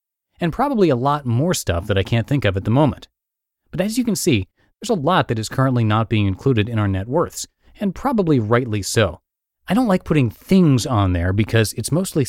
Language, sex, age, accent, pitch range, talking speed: English, male, 30-49, American, 105-155 Hz, 225 wpm